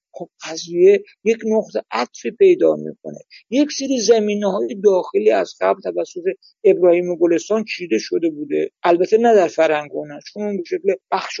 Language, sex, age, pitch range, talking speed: Persian, male, 50-69, 170-230 Hz, 155 wpm